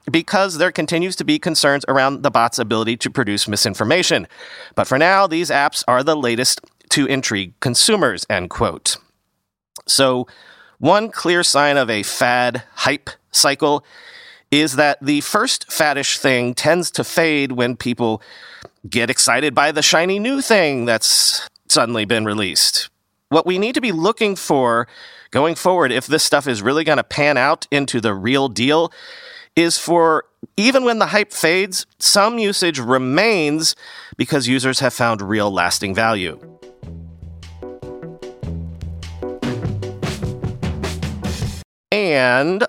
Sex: male